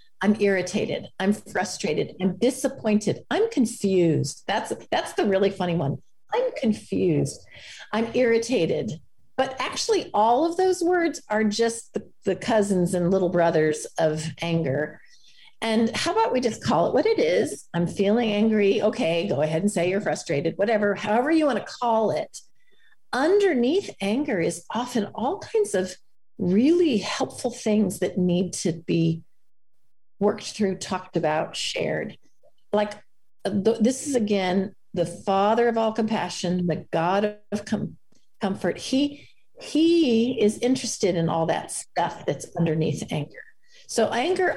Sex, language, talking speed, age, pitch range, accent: female, English, 145 wpm, 40-59, 180-250 Hz, American